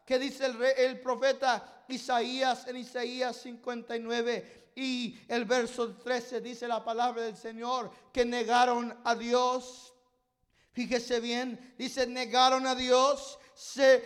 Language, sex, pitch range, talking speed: English, male, 240-275 Hz, 125 wpm